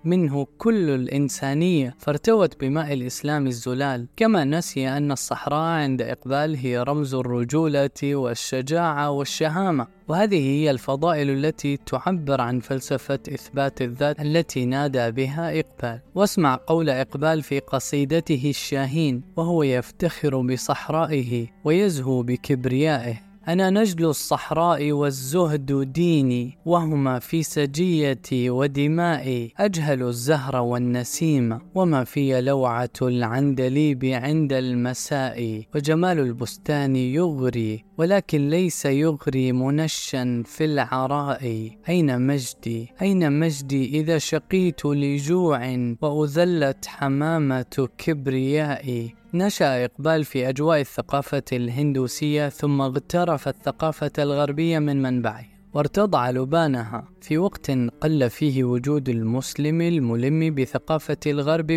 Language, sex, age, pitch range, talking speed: Arabic, female, 10-29, 130-160 Hz, 100 wpm